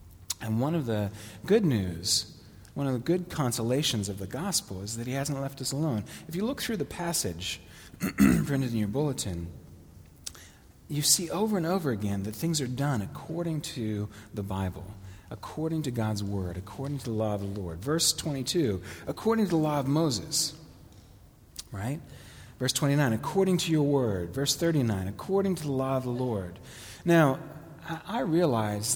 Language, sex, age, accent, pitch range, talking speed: English, male, 40-59, American, 105-145 Hz, 170 wpm